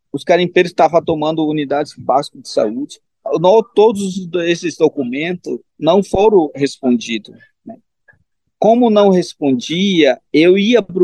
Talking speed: 120 wpm